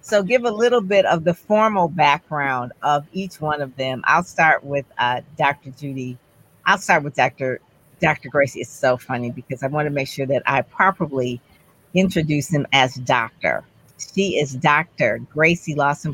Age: 50-69